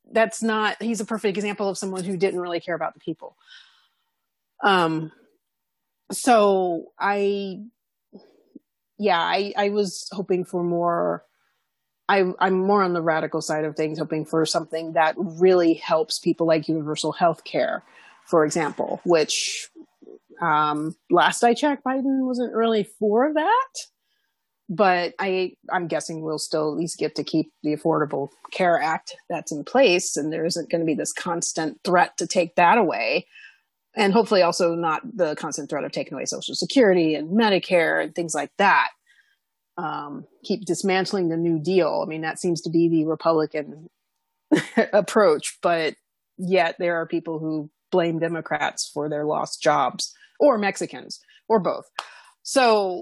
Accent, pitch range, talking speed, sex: American, 160-220 Hz, 155 wpm, female